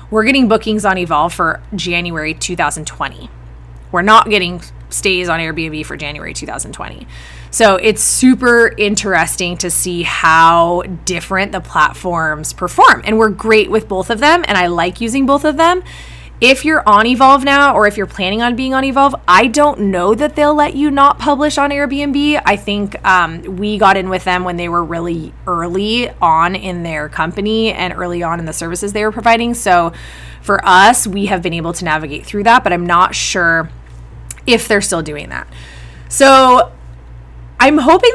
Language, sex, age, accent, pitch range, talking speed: English, female, 20-39, American, 170-255 Hz, 180 wpm